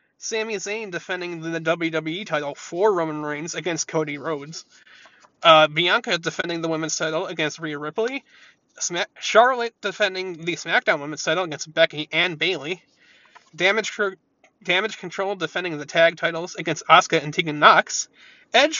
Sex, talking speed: male, 145 wpm